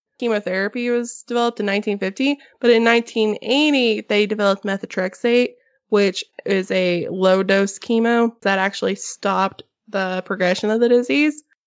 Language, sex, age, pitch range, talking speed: English, female, 20-39, 200-260 Hz, 125 wpm